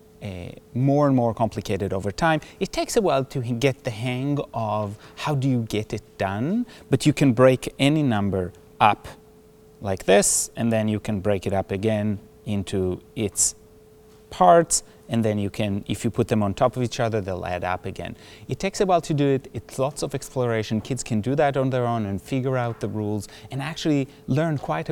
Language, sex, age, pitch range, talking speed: English, male, 30-49, 105-135 Hz, 205 wpm